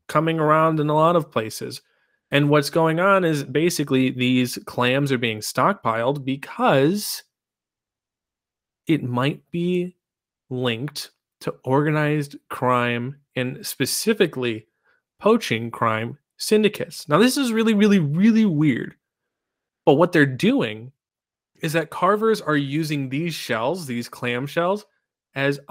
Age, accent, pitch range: 30-49, American, 130-170 Hz